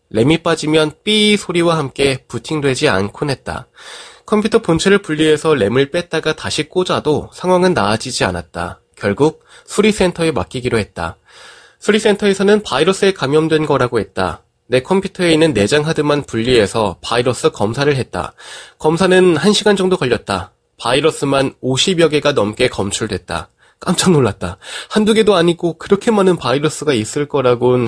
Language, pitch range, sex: Korean, 120-180 Hz, male